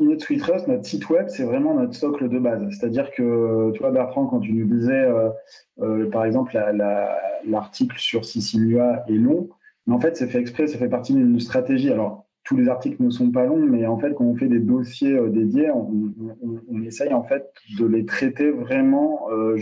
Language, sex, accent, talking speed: French, male, French, 215 wpm